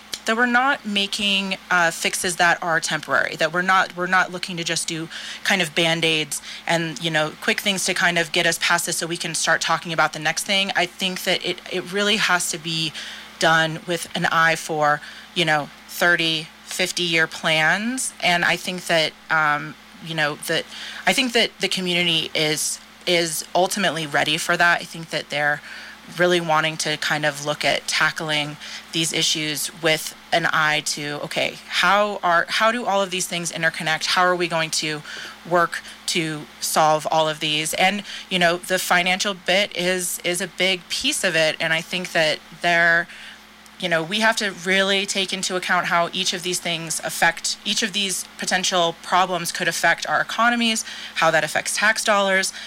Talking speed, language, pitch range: 190 wpm, English, 160-190 Hz